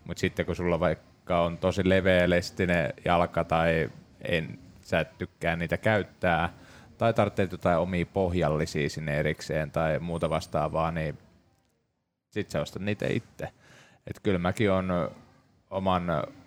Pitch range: 85-100 Hz